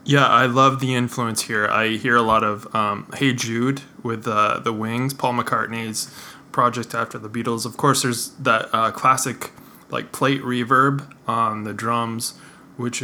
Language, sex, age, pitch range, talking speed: English, male, 20-39, 115-135 Hz, 170 wpm